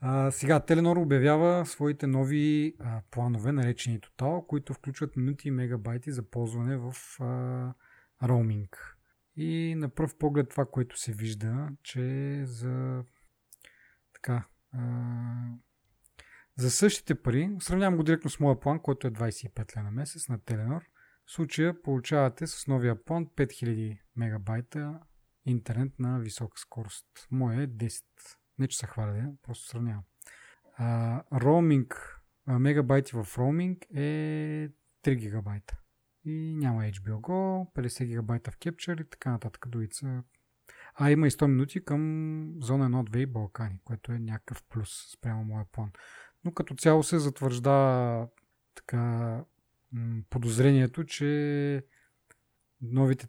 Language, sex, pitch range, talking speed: Bulgarian, male, 120-145 Hz, 130 wpm